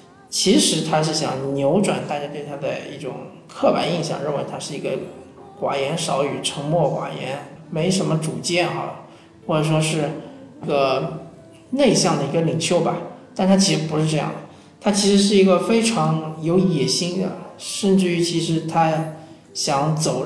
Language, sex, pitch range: Chinese, male, 155-190 Hz